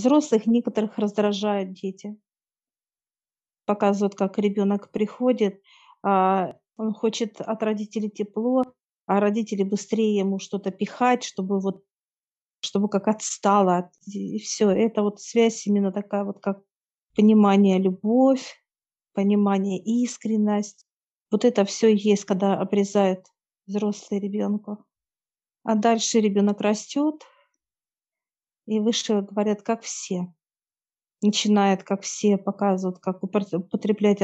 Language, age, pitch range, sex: Russian, 40-59, 200-225 Hz, female